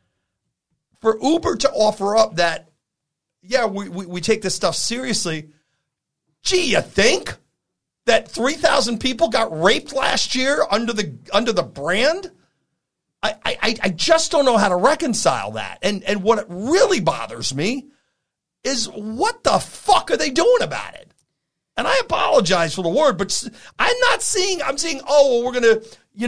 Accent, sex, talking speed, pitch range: American, male, 165 wpm, 190-270 Hz